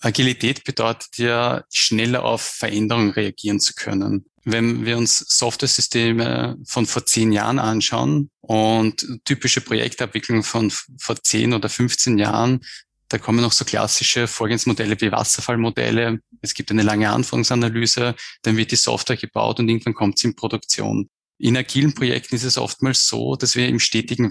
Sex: male